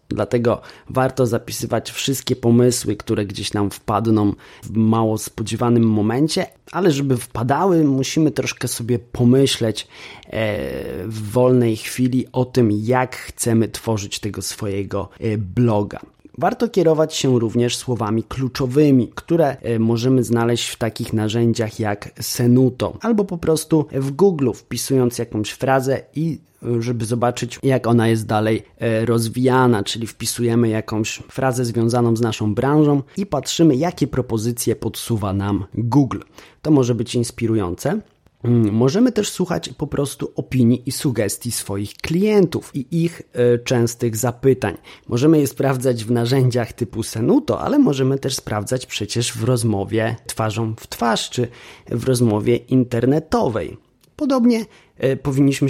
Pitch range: 115-135 Hz